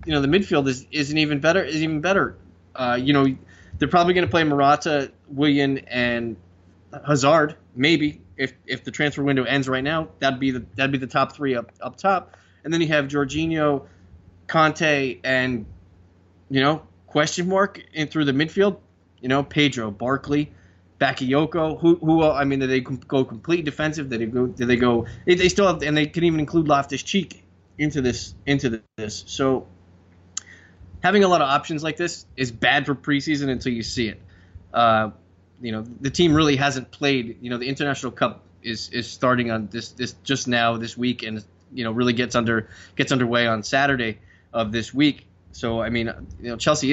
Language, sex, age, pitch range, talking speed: English, male, 20-39, 110-145 Hz, 190 wpm